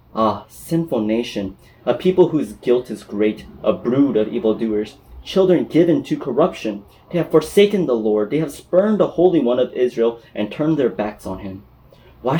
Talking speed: 180 wpm